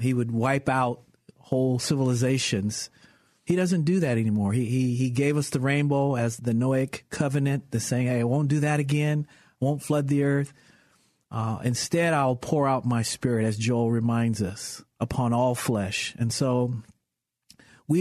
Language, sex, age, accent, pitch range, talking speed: English, male, 40-59, American, 120-145 Hz, 175 wpm